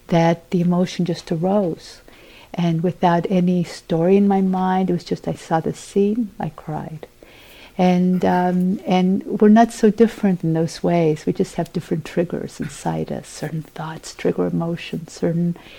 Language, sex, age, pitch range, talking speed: English, female, 50-69, 165-190 Hz, 165 wpm